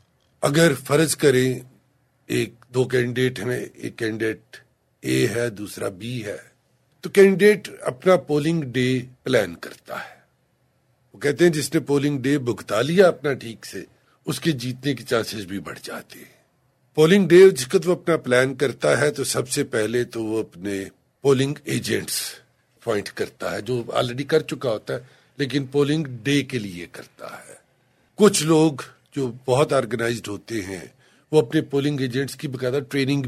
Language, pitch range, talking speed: Urdu, 120-150 Hz, 160 wpm